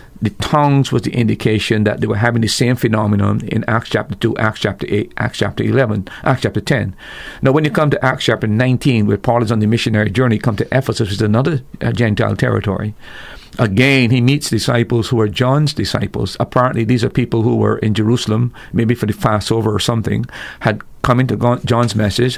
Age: 50-69